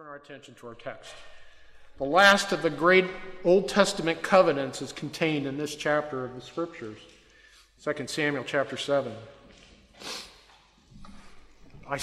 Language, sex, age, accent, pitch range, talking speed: English, male, 50-69, American, 140-175 Hz, 130 wpm